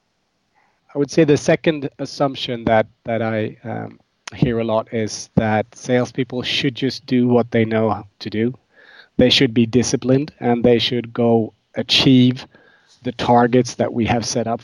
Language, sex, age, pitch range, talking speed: English, male, 30-49, 115-130 Hz, 165 wpm